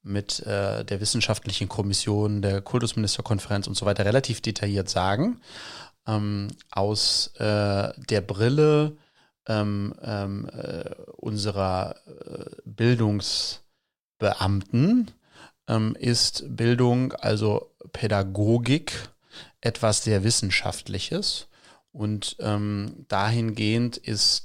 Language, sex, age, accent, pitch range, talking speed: German, male, 30-49, German, 105-120 Hz, 85 wpm